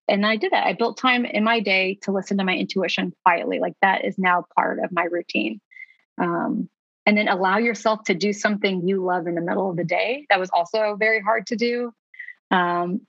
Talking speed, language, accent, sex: 220 wpm, English, American, female